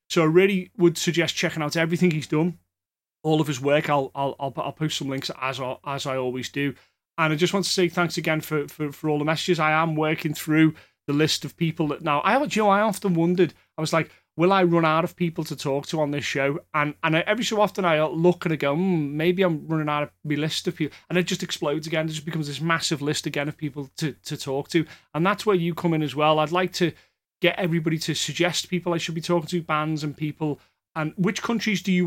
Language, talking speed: English, 265 wpm